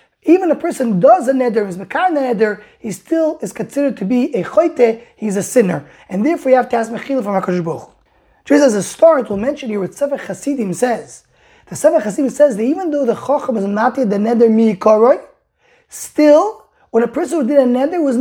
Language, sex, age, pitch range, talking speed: English, male, 20-39, 225-295 Hz, 205 wpm